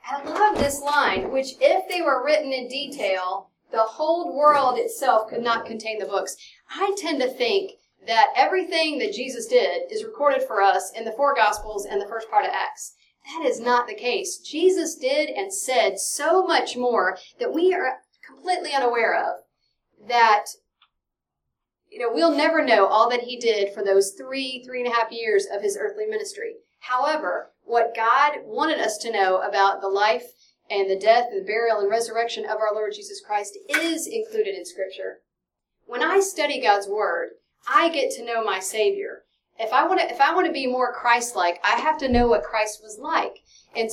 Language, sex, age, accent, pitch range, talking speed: English, female, 40-59, American, 215-330 Hz, 185 wpm